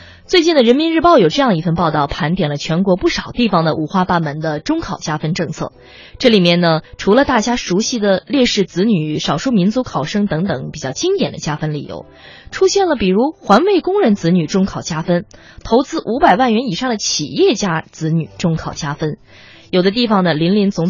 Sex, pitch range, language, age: female, 155-230 Hz, Chinese, 20-39